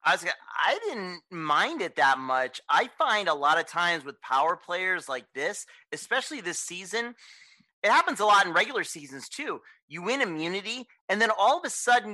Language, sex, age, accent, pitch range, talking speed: English, male, 30-49, American, 160-215 Hz, 200 wpm